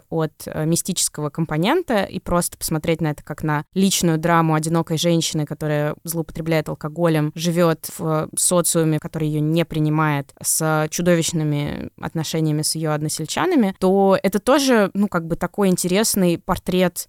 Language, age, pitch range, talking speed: Russian, 20-39, 160-205 Hz, 135 wpm